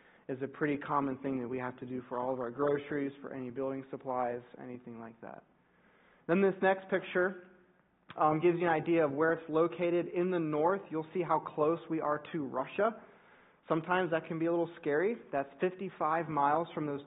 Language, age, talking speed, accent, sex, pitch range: English, 20-39, 205 wpm, American, male, 135-165 Hz